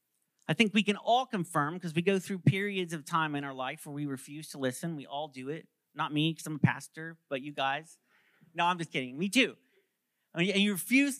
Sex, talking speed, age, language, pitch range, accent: male, 230 wpm, 40-59, English, 130-180 Hz, American